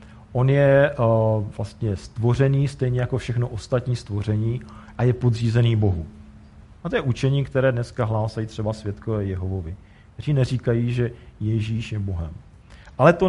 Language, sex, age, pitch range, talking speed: Czech, male, 40-59, 105-130 Hz, 145 wpm